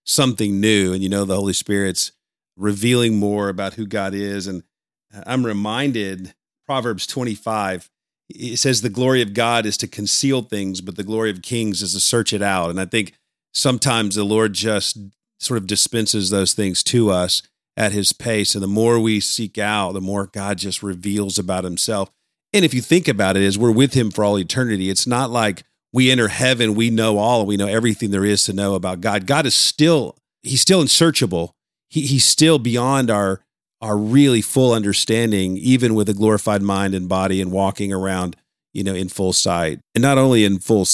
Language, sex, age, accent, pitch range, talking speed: English, male, 40-59, American, 100-125 Hz, 200 wpm